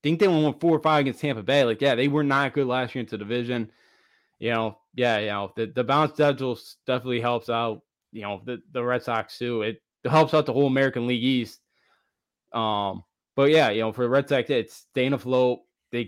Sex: male